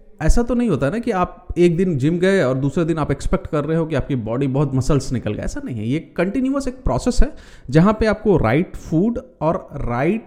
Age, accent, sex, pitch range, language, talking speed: 30-49, native, male, 130-205 Hz, Hindi, 245 wpm